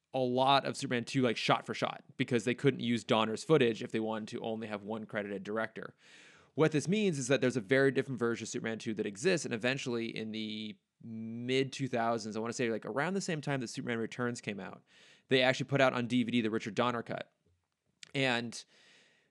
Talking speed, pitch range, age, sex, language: 220 wpm, 110-135 Hz, 20-39, male, English